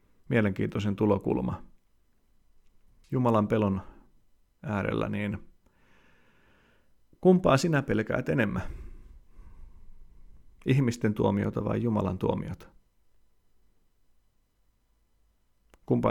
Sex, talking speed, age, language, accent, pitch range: male, 60 wpm, 40-59, Finnish, native, 95-115 Hz